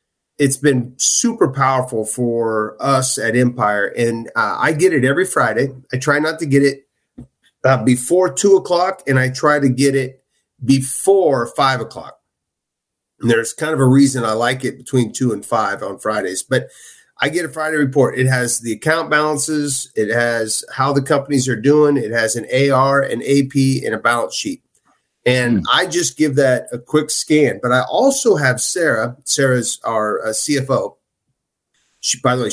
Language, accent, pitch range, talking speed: English, American, 125-150 Hz, 180 wpm